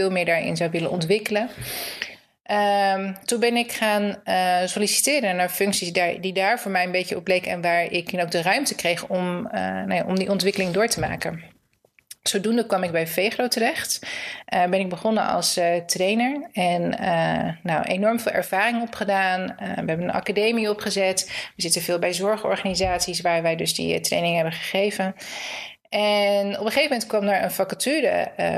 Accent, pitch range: Dutch, 180-215 Hz